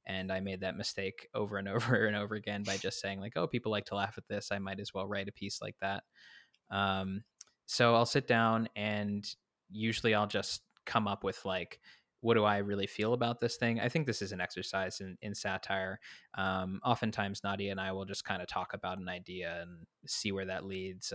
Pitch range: 100-115 Hz